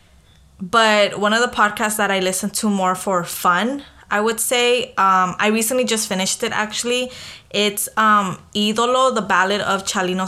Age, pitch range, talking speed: 20-39, 185-225 Hz, 170 wpm